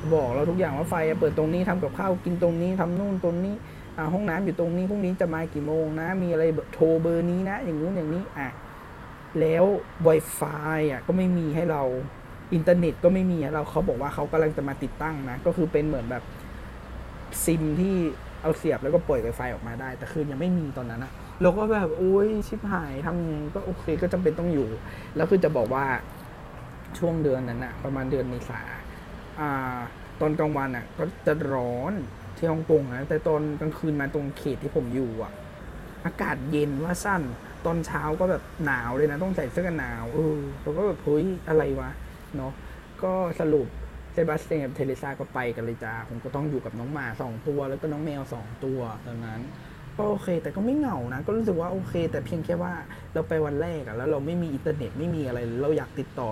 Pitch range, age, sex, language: 130-170 Hz, 20-39, male, Thai